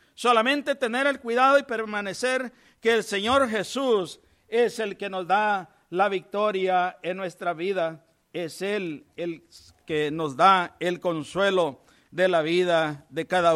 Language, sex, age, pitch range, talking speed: English, male, 50-69, 195-265 Hz, 145 wpm